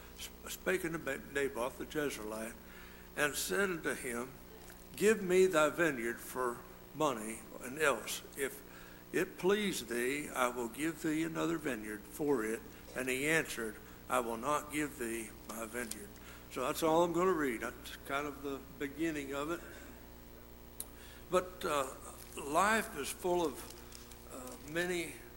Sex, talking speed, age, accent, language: male, 145 wpm, 60-79, American, English